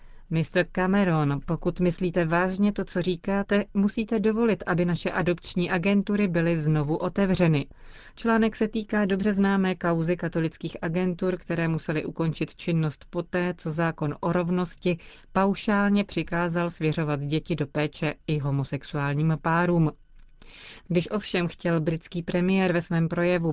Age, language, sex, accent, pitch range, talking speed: 30-49, Czech, female, native, 160-185 Hz, 130 wpm